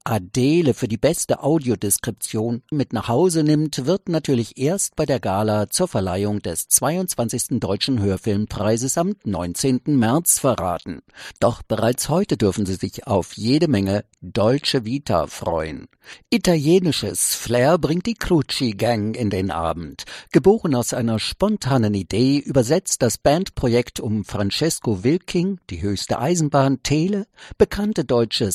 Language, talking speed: English, 130 wpm